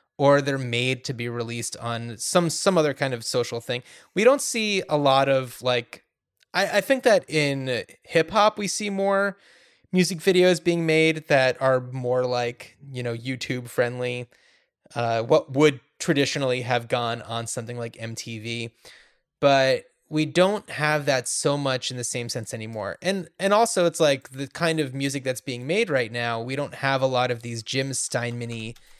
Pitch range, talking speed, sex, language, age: 120-155 Hz, 180 wpm, male, English, 20-39